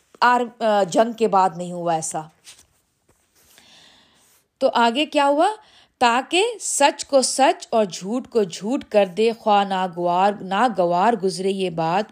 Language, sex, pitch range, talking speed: Urdu, female, 195-270 Hz, 140 wpm